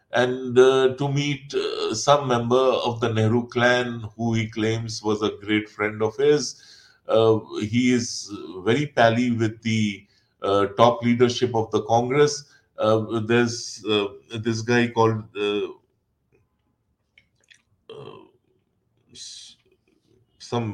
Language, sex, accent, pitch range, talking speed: English, male, Indian, 110-130 Hz, 120 wpm